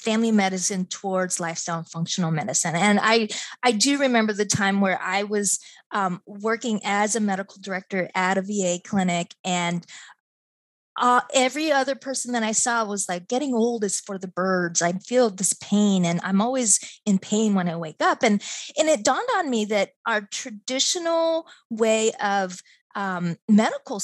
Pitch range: 190-255 Hz